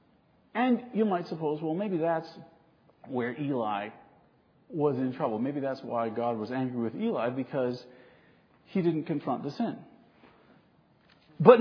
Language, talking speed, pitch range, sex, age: English, 140 wpm, 160-240 Hz, male, 40-59